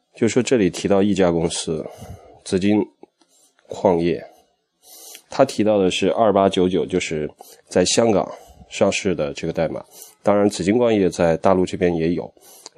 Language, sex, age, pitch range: Chinese, male, 20-39, 85-95 Hz